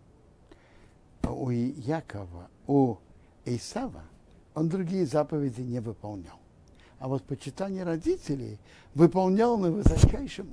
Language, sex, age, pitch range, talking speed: Russian, male, 60-79, 120-185 Hz, 90 wpm